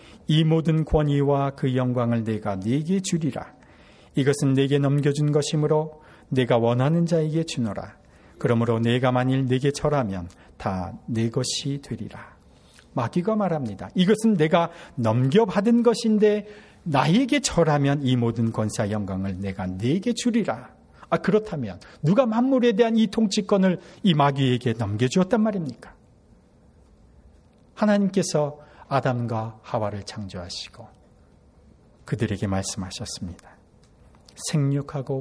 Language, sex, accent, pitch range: Korean, male, native, 115-180 Hz